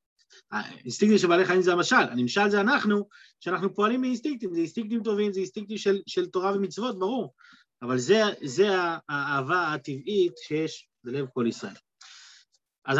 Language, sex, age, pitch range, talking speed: Hebrew, male, 30-49, 165-225 Hz, 150 wpm